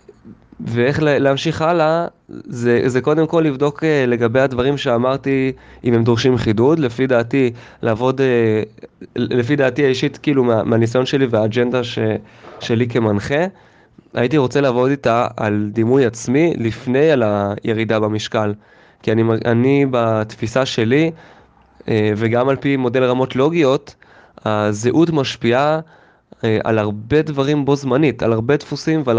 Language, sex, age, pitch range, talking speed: English, male, 20-39, 115-145 Hz, 115 wpm